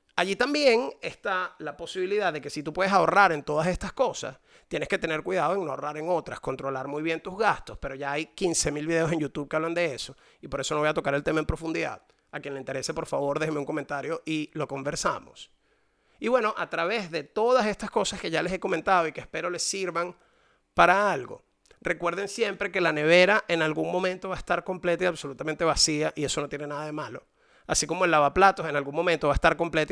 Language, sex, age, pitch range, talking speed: Spanish, male, 30-49, 155-210 Hz, 235 wpm